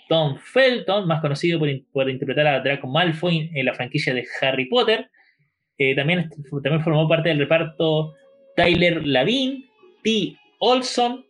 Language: Spanish